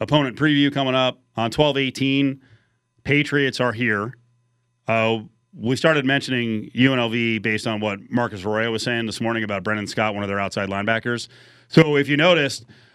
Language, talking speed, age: English, 165 wpm, 30-49